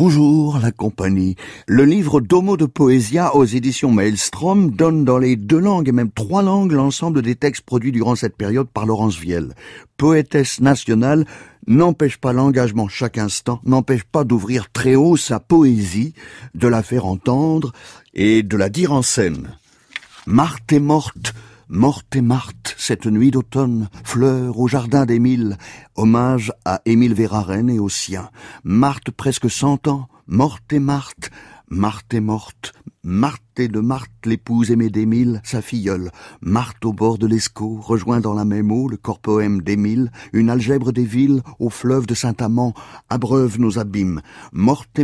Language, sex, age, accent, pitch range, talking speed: French, male, 50-69, French, 110-130 Hz, 155 wpm